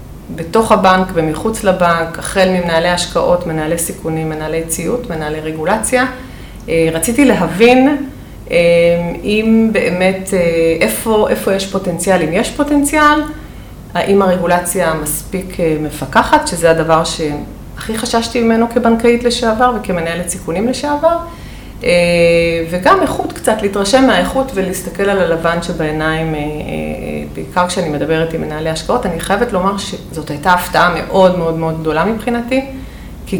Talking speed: 115 wpm